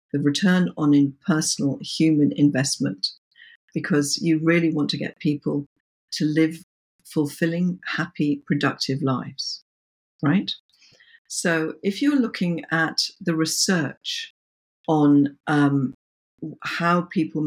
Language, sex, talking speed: French, female, 105 wpm